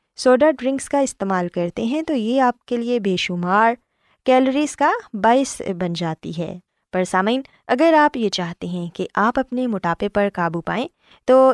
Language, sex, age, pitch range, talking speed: Urdu, female, 20-39, 185-260 Hz, 175 wpm